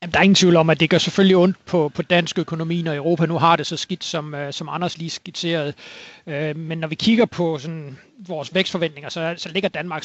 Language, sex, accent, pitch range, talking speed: Danish, male, native, 155-185 Hz, 235 wpm